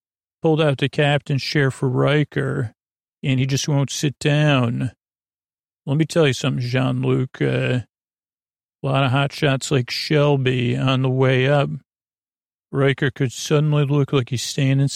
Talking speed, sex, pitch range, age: 150 wpm, male, 125-140 Hz, 40-59